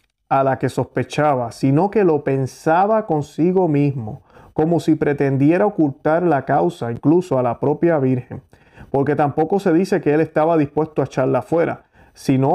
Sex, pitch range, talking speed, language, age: male, 130-165 Hz, 160 wpm, Spanish, 30-49